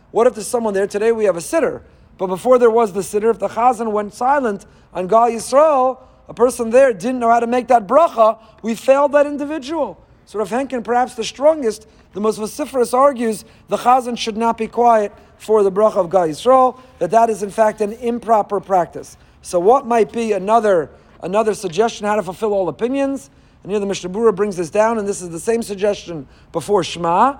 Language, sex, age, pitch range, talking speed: English, male, 40-59, 195-245 Hz, 210 wpm